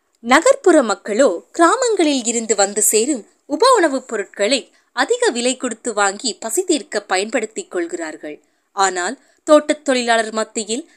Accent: native